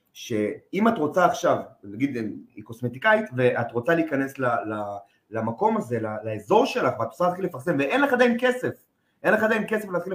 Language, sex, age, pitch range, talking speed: Hebrew, male, 30-49, 125-180 Hz, 170 wpm